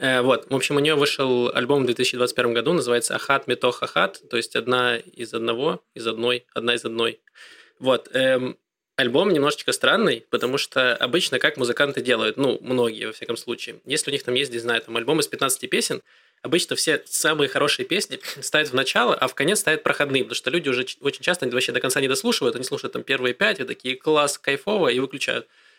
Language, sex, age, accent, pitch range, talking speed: Russian, male, 20-39, native, 120-140 Hz, 200 wpm